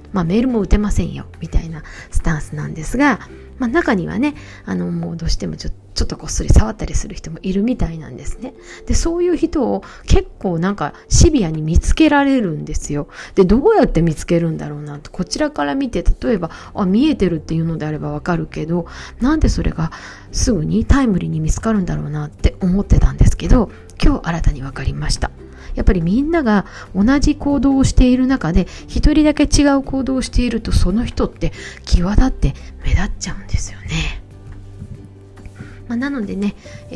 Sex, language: female, Japanese